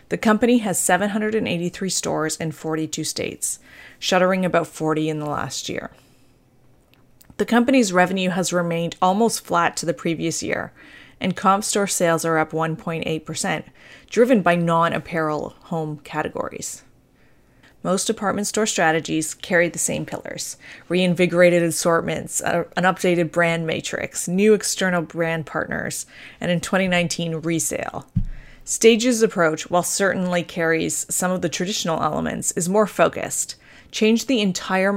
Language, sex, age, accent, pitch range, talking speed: English, female, 20-39, American, 160-190 Hz, 130 wpm